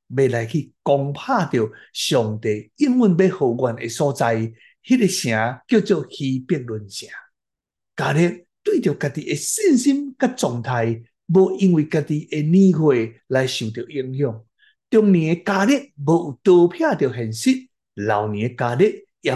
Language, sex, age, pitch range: Chinese, male, 60-79, 120-195 Hz